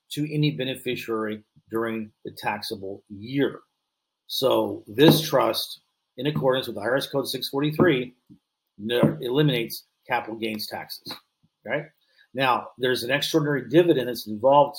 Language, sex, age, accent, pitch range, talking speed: English, male, 40-59, American, 115-150 Hz, 115 wpm